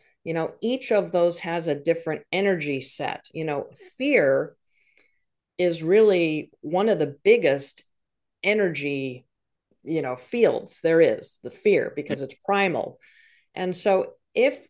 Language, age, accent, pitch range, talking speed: English, 40-59, American, 155-215 Hz, 135 wpm